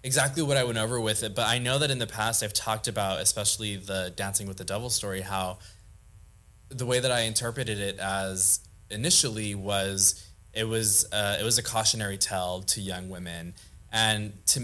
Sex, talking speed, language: male, 195 wpm, English